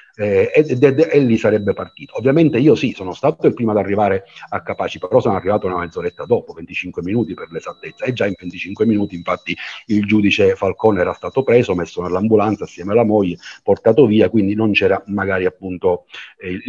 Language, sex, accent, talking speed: Italian, male, native, 200 wpm